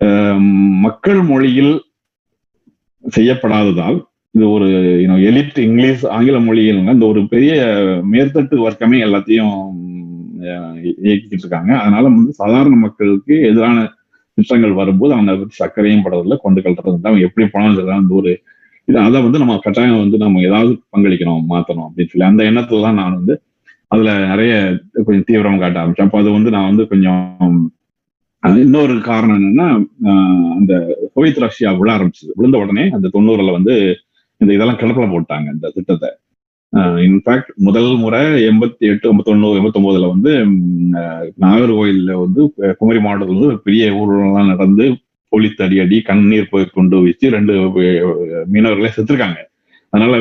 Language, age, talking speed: Tamil, 30-49, 125 wpm